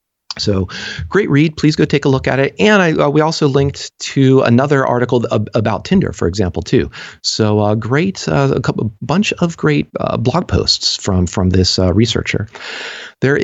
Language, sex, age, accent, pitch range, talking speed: English, male, 40-59, American, 105-140 Hz, 190 wpm